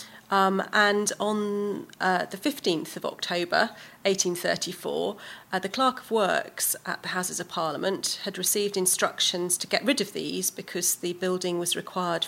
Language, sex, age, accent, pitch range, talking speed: English, female, 40-59, British, 180-205 Hz, 155 wpm